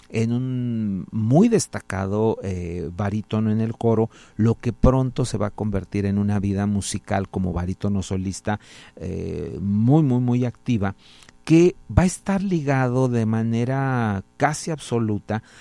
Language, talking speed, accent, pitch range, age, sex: Spanish, 140 wpm, Mexican, 100-120 Hz, 40-59, male